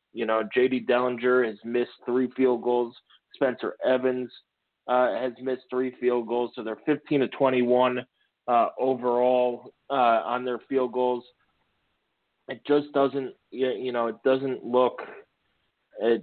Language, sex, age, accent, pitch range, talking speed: English, male, 30-49, American, 115-130 Hz, 140 wpm